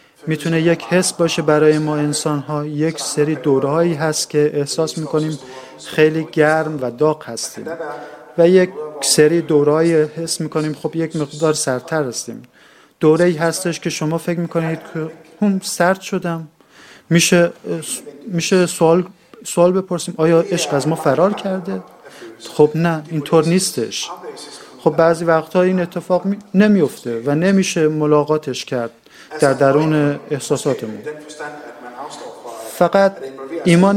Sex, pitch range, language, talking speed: male, 145-170 Hz, Persian, 125 wpm